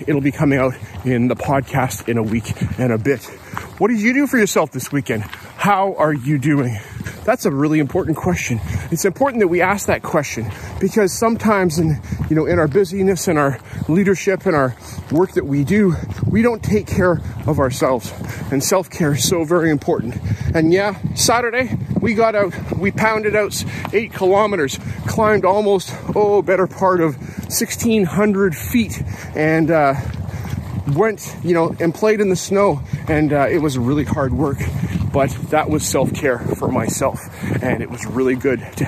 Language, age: English, 40-59